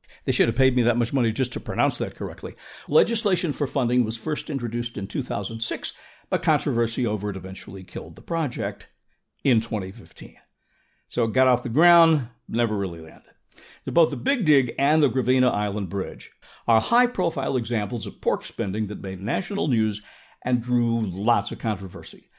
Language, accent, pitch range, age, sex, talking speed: English, American, 110-140 Hz, 60-79, male, 170 wpm